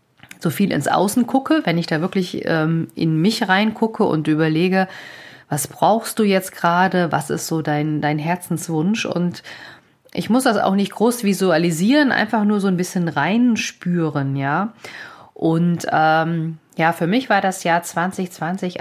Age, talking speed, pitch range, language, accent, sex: 40-59, 165 wpm, 165-200 Hz, German, German, female